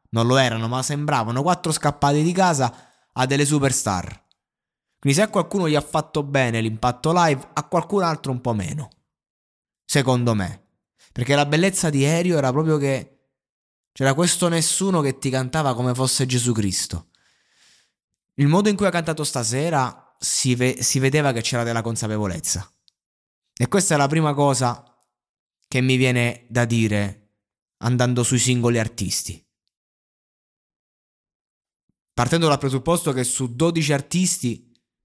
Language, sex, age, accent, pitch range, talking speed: Italian, male, 20-39, native, 115-150 Hz, 145 wpm